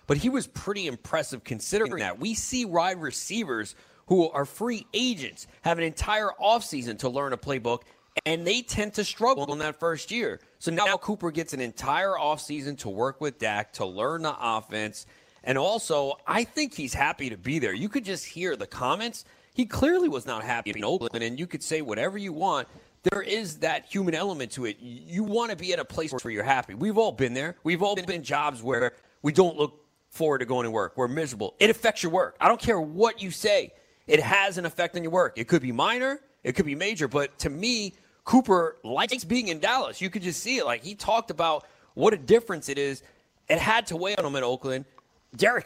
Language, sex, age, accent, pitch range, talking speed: English, male, 30-49, American, 130-205 Hz, 220 wpm